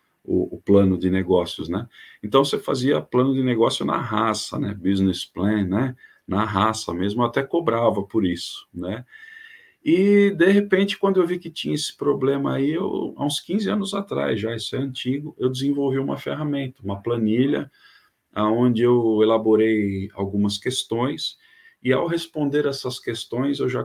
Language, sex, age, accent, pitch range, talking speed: Portuguese, male, 40-59, Brazilian, 105-135 Hz, 165 wpm